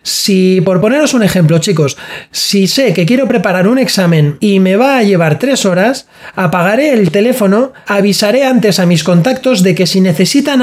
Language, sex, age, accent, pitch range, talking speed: Spanish, male, 20-39, Spanish, 180-230 Hz, 180 wpm